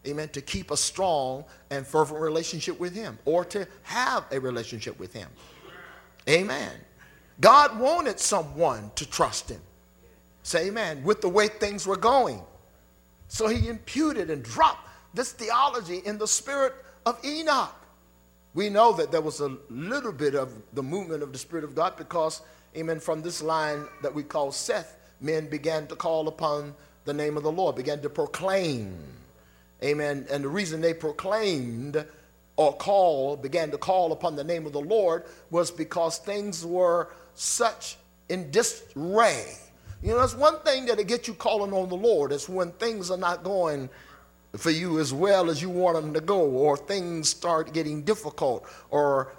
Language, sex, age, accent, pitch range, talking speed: English, male, 50-69, American, 145-195 Hz, 170 wpm